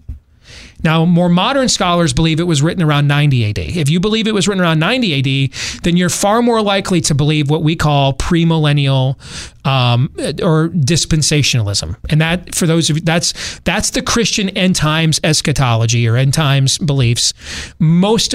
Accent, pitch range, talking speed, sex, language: American, 135-175 Hz, 165 wpm, male, English